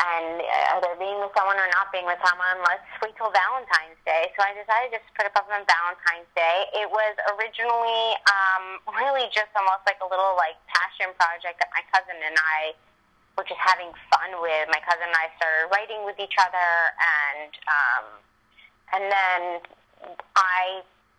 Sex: female